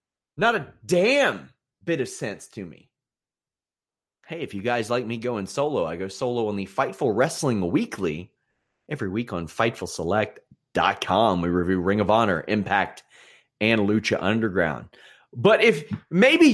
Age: 30-49